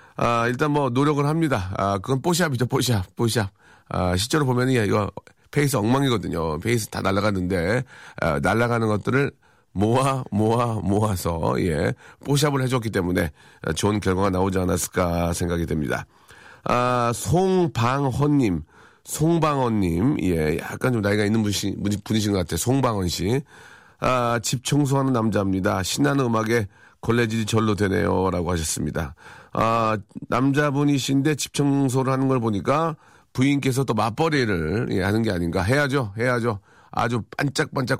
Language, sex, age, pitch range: Korean, male, 40-59, 100-130 Hz